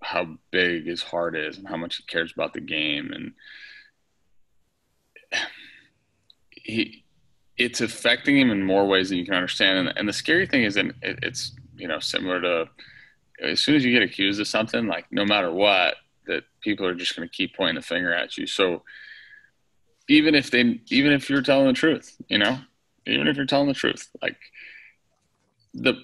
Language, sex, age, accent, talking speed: English, male, 20-39, American, 185 wpm